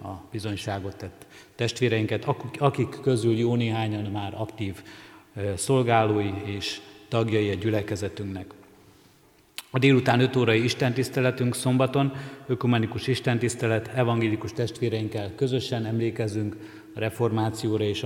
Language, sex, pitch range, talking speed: Hungarian, male, 105-120 Hz, 100 wpm